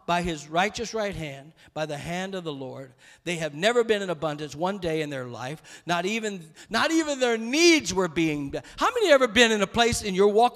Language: English